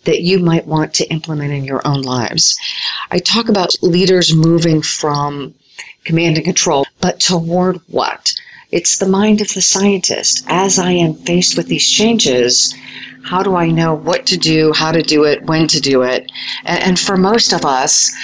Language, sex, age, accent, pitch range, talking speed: English, female, 40-59, American, 145-180 Hz, 180 wpm